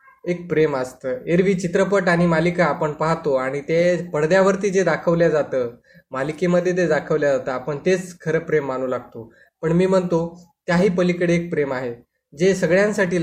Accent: native